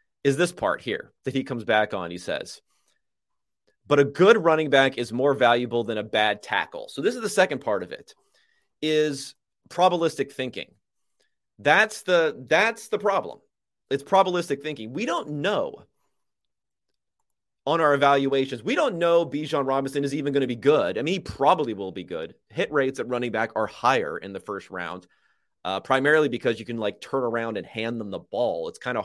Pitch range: 120-165 Hz